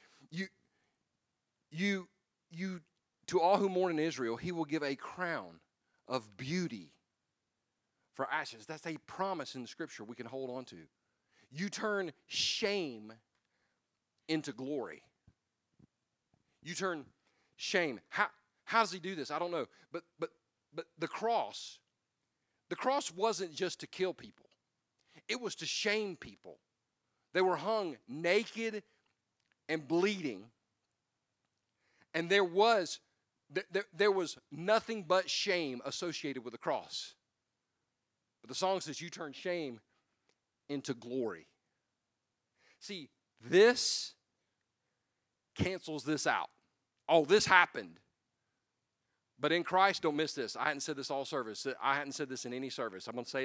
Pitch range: 125-185 Hz